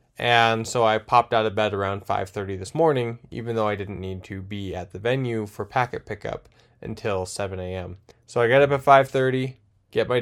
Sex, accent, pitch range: male, American, 100-125 Hz